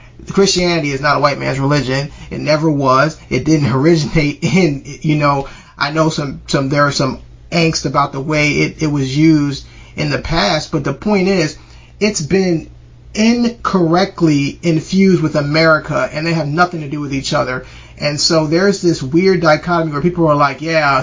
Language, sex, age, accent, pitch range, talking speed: English, male, 30-49, American, 145-170 Hz, 185 wpm